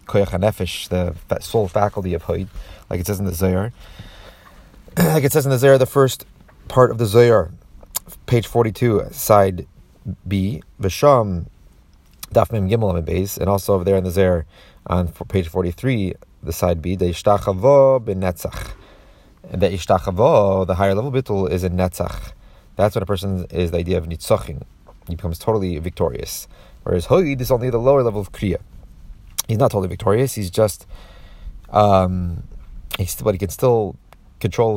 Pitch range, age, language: 90-120 Hz, 30-49, English